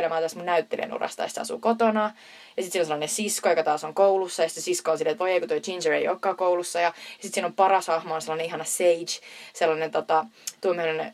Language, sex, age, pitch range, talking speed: Finnish, female, 20-39, 165-195 Hz, 220 wpm